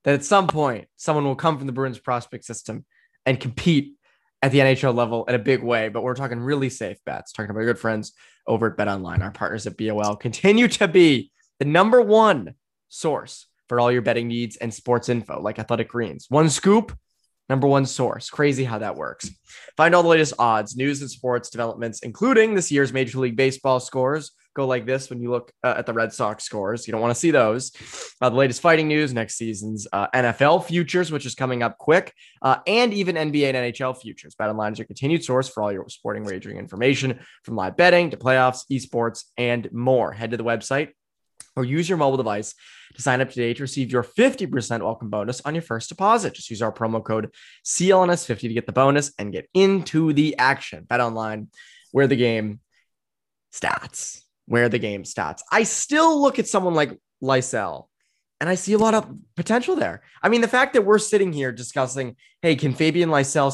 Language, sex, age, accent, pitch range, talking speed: English, male, 20-39, American, 115-155 Hz, 205 wpm